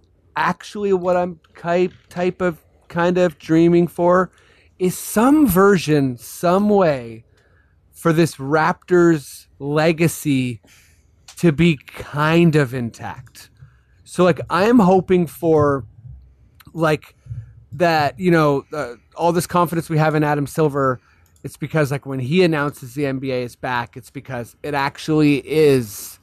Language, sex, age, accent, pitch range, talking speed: English, male, 30-49, American, 115-170 Hz, 135 wpm